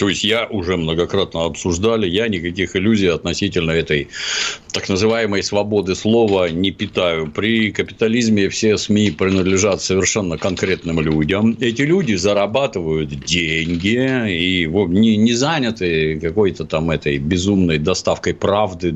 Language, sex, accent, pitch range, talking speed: Russian, male, native, 85-110 Hz, 125 wpm